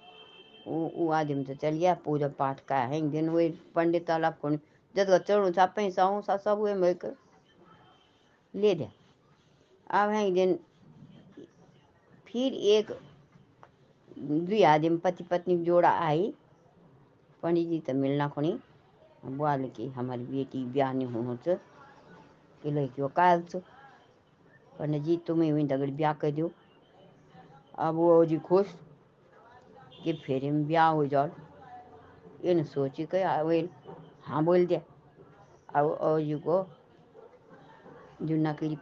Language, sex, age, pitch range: Hindi, male, 60-79, 145-180 Hz